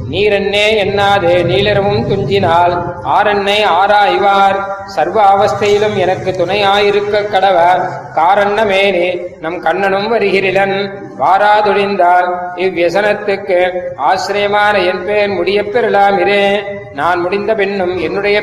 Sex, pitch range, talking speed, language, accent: male, 185-205 Hz, 70 wpm, Tamil, native